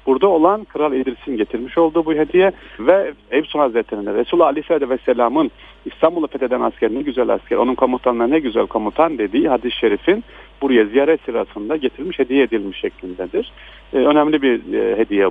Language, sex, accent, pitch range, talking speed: Turkish, male, native, 125-175 Hz, 155 wpm